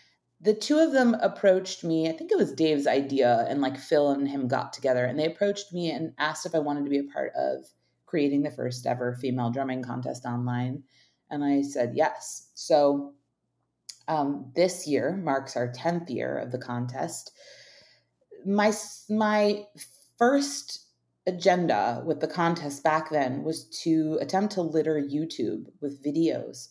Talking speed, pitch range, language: 165 wpm, 135-170 Hz, English